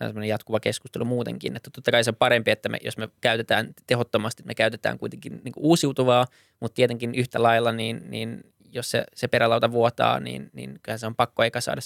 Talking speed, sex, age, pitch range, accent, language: 180 wpm, male, 20-39, 110-120 Hz, native, Finnish